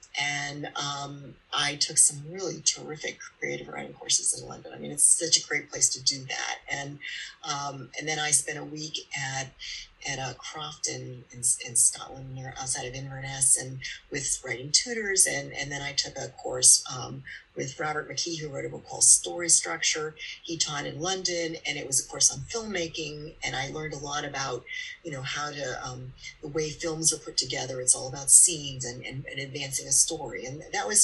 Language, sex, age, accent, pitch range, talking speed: English, female, 40-59, American, 130-170 Hz, 205 wpm